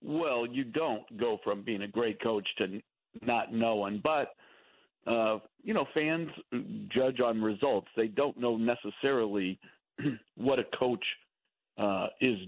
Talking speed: 140 wpm